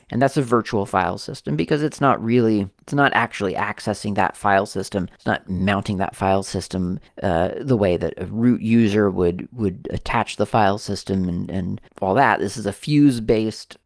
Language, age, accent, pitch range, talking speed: English, 30-49, American, 95-125 Hz, 190 wpm